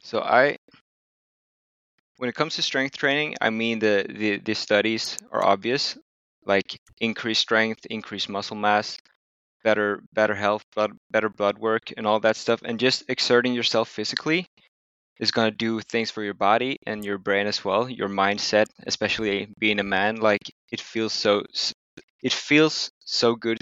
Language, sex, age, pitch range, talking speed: English, male, 20-39, 105-115 Hz, 165 wpm